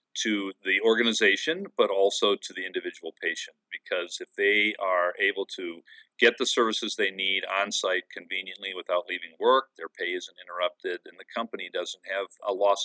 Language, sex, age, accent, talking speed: English, male, 50-69, American, 175 wpm